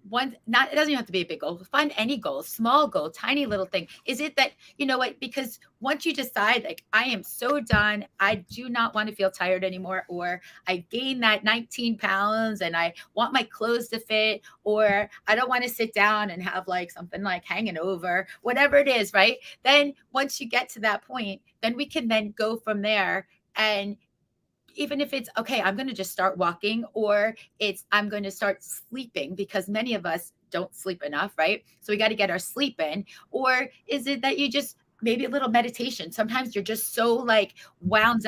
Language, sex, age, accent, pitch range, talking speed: English, female, 30-49, American, 190-245 Hz, 215 wpm